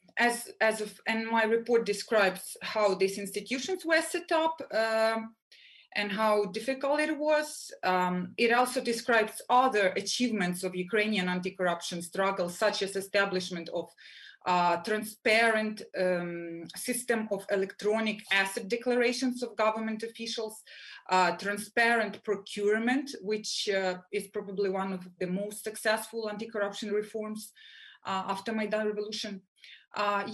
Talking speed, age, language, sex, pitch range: 125 wpm, 30-49, English, female, 190-230 Hz